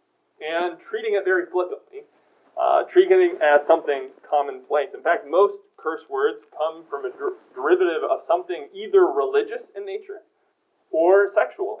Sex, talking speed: male, 140 wpm